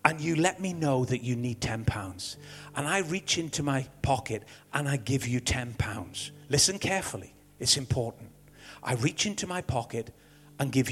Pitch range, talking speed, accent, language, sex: 120-155 Hz, 180 wpm, British, English, male